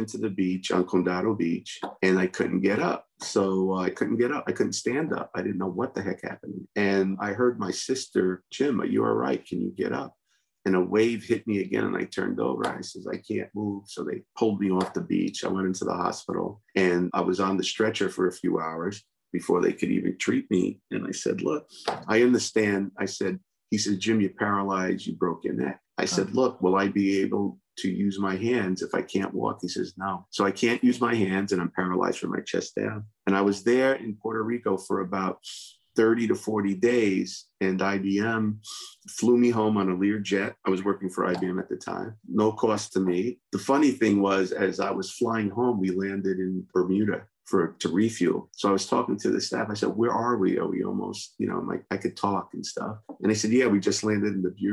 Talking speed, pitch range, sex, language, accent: 235 wpm, 95-110 Hz, male, English, American